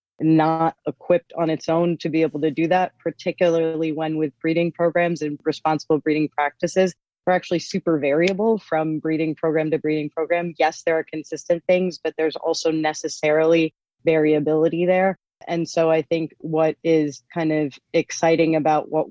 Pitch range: 150-165 Hz